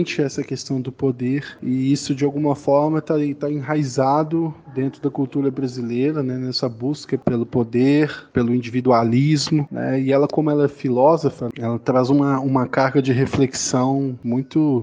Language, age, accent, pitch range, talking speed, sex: Portuguese, 20-39, Brazilian, 125-150 Hz, 150 wpm, male